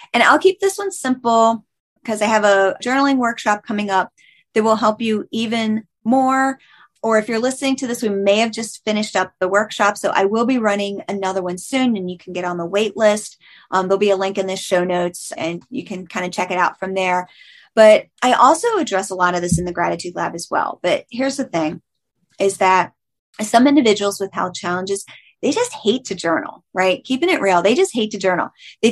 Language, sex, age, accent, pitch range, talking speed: English, female, 30-49, American, 190-265 Hz, 225 wpm